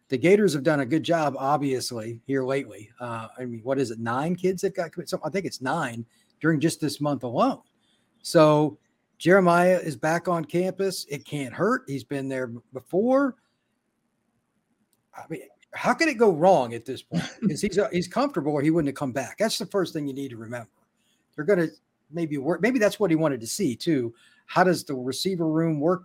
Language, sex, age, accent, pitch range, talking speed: English, male, 50-69, American, 135-180 Hz, 210 wpm